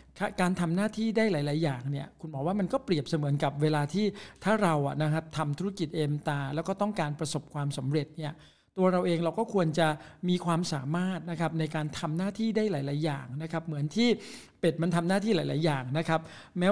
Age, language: 60-79, Thai